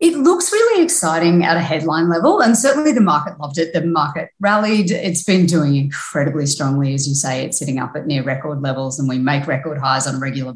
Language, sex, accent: English, female, Australian